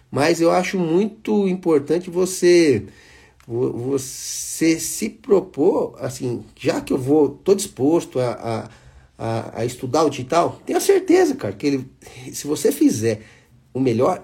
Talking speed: 130 wpm